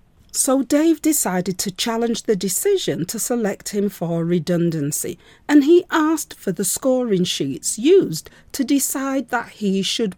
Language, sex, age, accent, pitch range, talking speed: English, female, 40-59, British, 190-295 Hz, 145 wpm